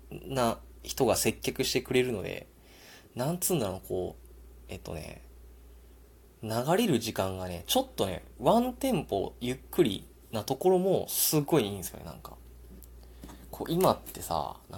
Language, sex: Japanese, male